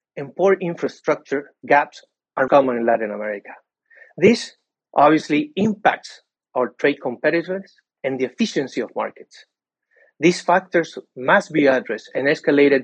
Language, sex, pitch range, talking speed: English, male, 135-185 Hz, 125 wpm